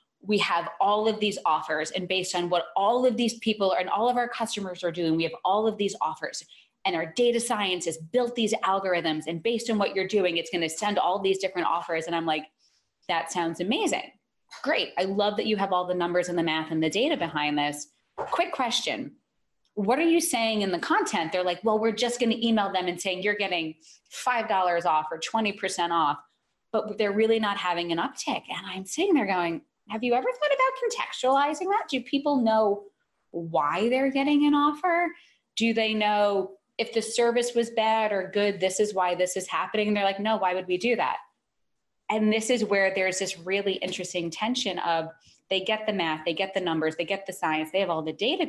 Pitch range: 170-225 Hz